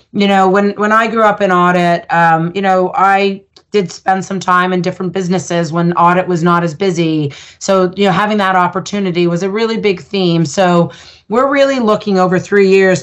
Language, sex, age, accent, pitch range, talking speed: English, female, 30-49, American, 175-205 Hz, 205 wpm